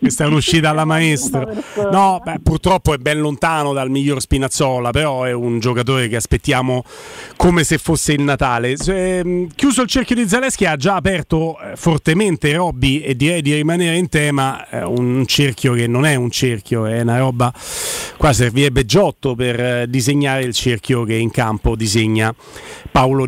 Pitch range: 130-175 Hz